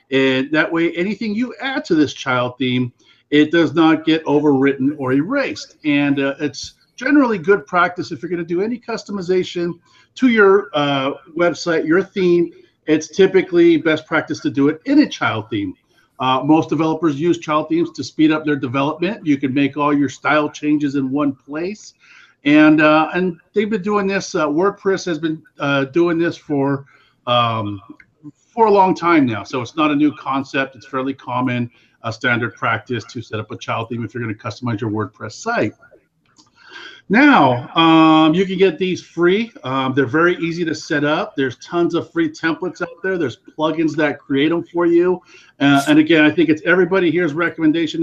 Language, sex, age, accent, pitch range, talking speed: English, male, 50-69, American, 140-185 Hz, 190 wpm